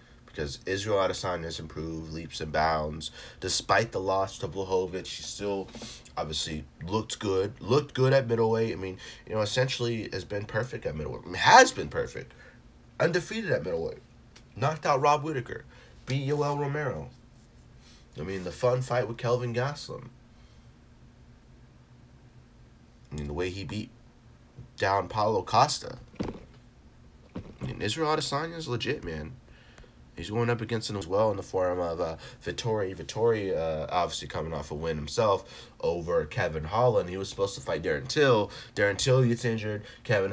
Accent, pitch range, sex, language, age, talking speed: American, 95-140 Hz, male, English, 30-49, 155 wpm